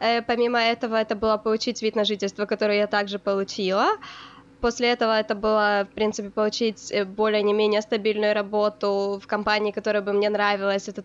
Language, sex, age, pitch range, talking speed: Ukrainian, female, 20-39, 205-235 Hz, 155 wpm